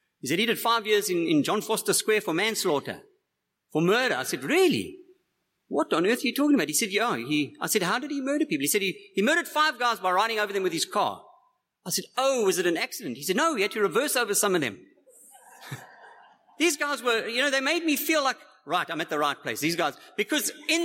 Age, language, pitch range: 50-69, English, 200-295 Hz